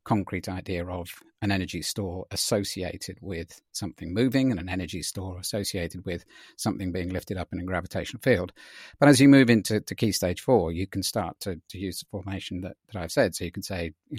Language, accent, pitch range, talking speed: English, British, 90-110 Hz, 210 wpm